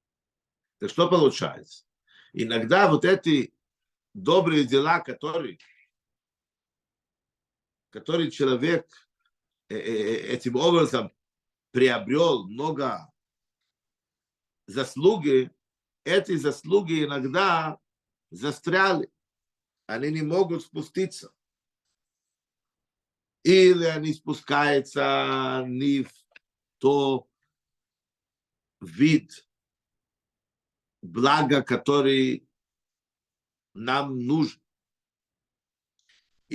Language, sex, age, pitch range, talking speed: Russian, male, 50-69, 130-165 Hz, 55 wpm